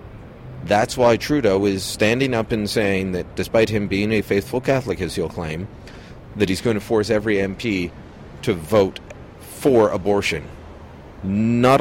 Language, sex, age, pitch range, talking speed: English, male, 40-59, 90-110 Hz, 150 wpm